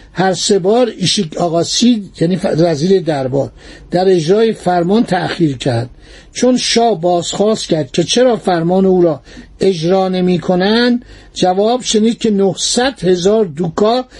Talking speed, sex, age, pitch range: 120 wpm, male, 50-69, 170-215 Hz